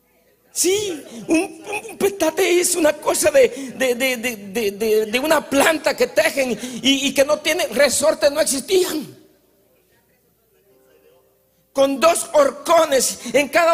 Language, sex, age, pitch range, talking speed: Spanish, male, 50-69, 235-310 Hz, 135 wpm